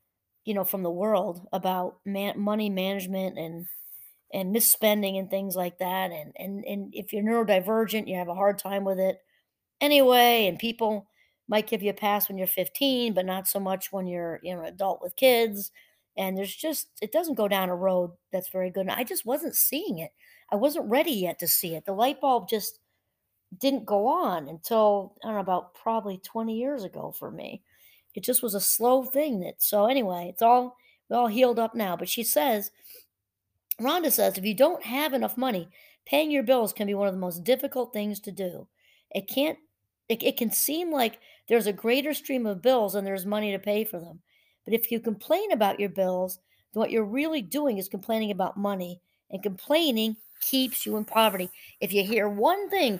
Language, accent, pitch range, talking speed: English, American, 190-245 Hz, 205 wpm